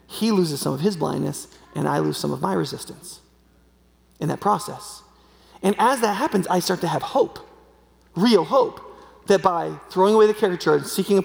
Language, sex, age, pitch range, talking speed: English, male, 30-49, 165-220 Hz, 190 wpm